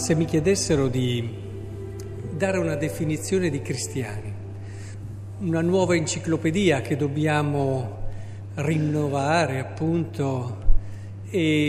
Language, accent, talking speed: Italian, native, 85 wpm